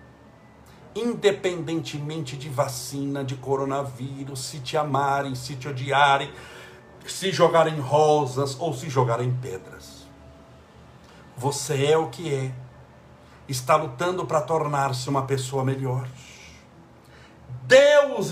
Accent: Brazilian